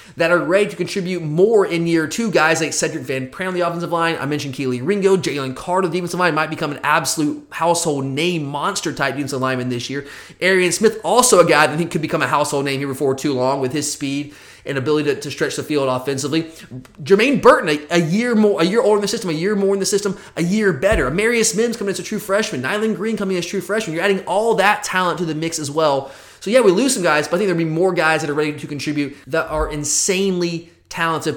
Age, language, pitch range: 20-39, English, 150-190 Hz